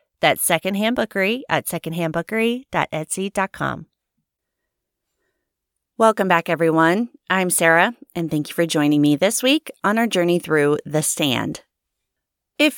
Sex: female